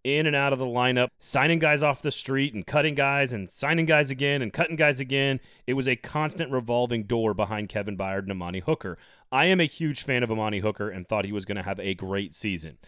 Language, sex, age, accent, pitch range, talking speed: English, male, 30-49, American, 110-145 Hz, 240 wpm